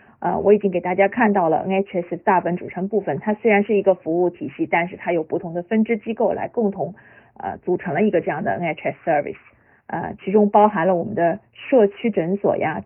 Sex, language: female, Chinese